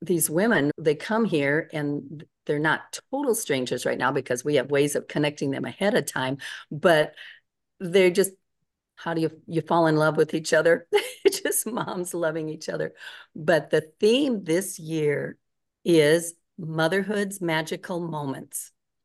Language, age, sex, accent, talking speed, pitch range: English, 50-69, female, American, 160 wpm, 145-170 Hz